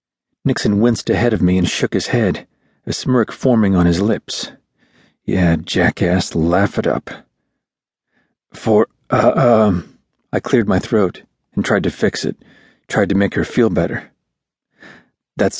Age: 40-59